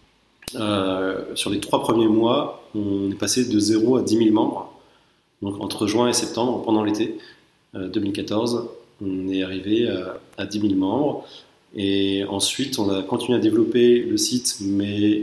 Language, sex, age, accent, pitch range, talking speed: French, male, 20-39, French, 95-115 Hz, 165 wpm